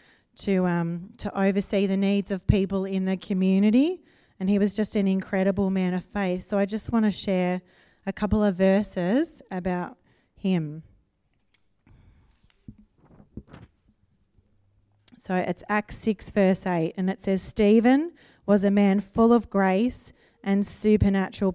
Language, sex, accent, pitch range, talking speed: English, female, Australian, 180-210 Hz, 140 wpm